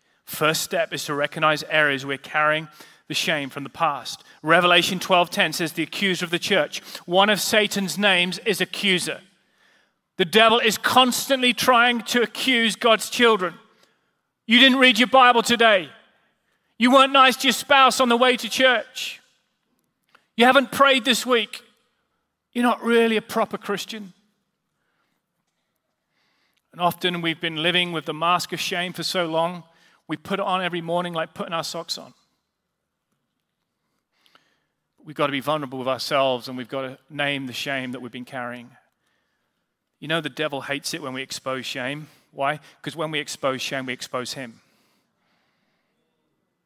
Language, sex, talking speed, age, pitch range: English, male, 160 wpm, 30-49, 140-215 Hz